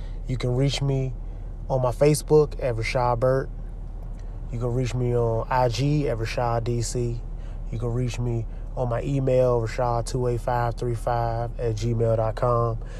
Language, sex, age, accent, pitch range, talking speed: English, male, 20-39, American, 115-125 Hz, 135 wpm